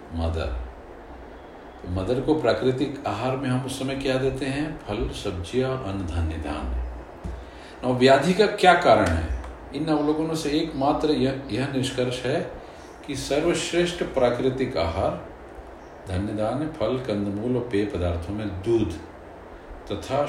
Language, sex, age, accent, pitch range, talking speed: Hindi, male, 50-69, native, 90-135 Hz, 130 wpm